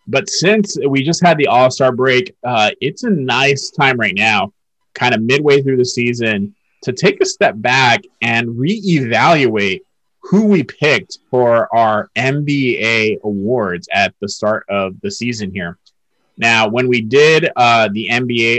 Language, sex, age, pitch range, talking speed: English, male, 30-49, 110-130 Hz, 160 wpm